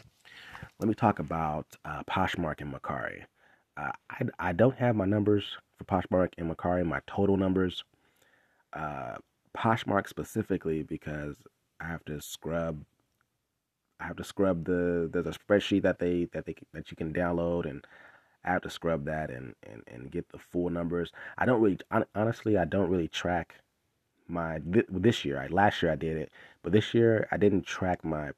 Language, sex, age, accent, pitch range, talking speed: English, male, 30-49, American, 80-95 Hz, 180 wpm